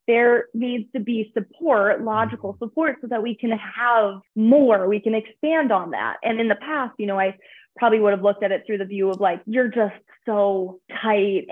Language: English